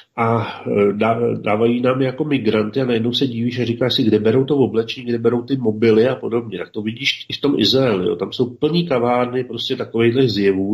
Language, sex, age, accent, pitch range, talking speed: Czech, male, 40-59, native, 110-125 Hz, 205 wpm